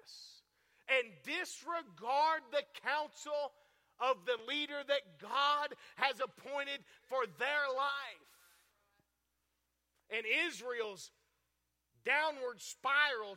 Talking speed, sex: 80 wpm, male